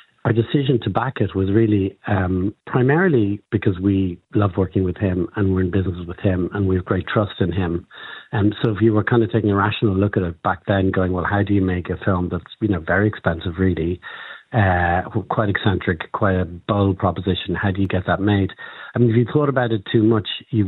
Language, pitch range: English, 90-105 Hz